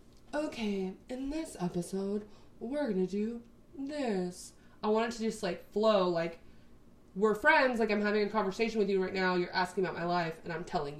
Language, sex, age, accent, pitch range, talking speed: English, female, 20-39, American, 185-230 Hz, 195 wpm